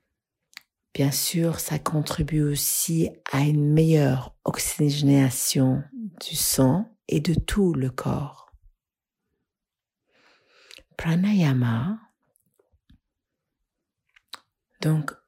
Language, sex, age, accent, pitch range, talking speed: English, female, 50-69, French, 140-180 Hz, 70 wpm